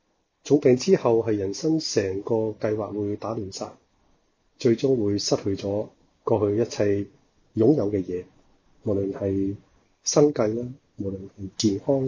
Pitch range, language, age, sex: 100-125 Hz, Chinese, 30-49, male